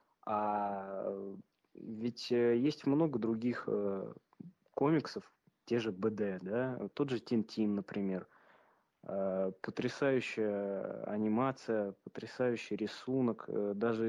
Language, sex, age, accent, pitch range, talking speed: Russian, male, 20-39, native, 100-120 Hz, 95 wpm